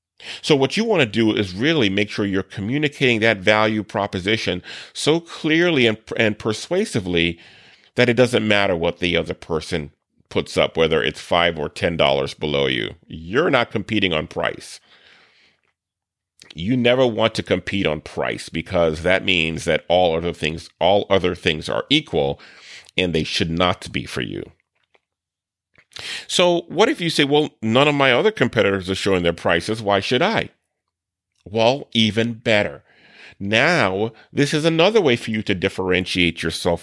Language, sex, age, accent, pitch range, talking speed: English, male, 40-59, American, 95-135 Hz, 165 wpm